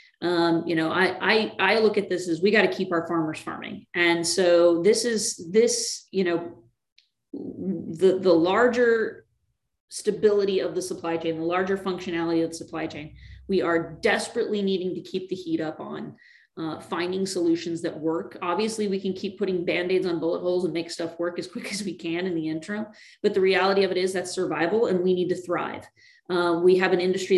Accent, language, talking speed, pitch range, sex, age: American, English, 205 wpm, 170-210 Hz, female, 30-49